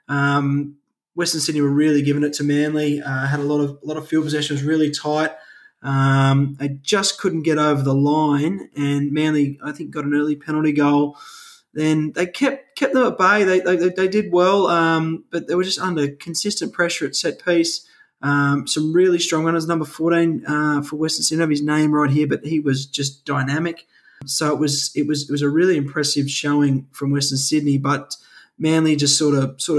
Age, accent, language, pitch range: 20-39, Australian, English, 145-165 Hz